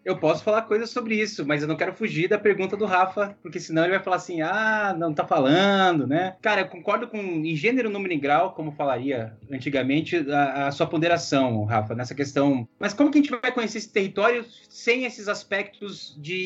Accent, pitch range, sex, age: Brazilian, 150-210 Hz, male, 20-39